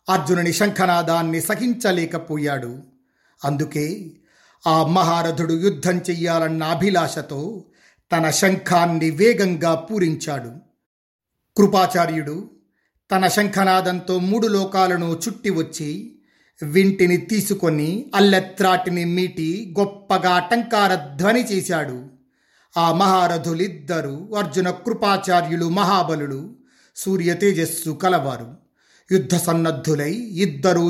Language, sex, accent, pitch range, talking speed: Telugu, male, native, 165-190 Hz, 75 wpm